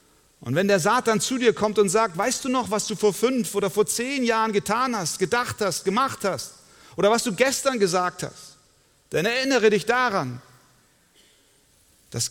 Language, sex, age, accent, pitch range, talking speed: German, male, 40-59, German, 110-165 Hz, 180 wpm